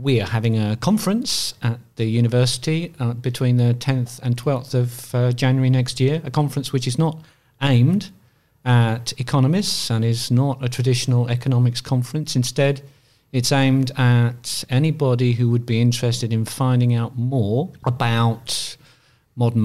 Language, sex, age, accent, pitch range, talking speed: English, male, 50-69, British, 115-135 Hz, 150 wpm